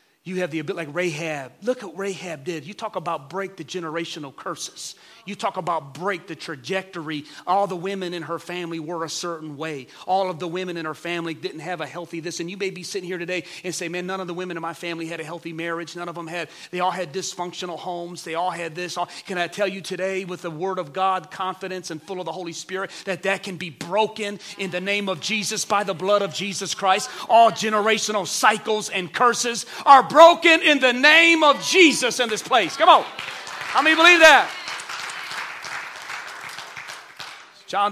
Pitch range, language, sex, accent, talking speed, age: 160-195 Hz, English, male, American, 215 wpm, 40-59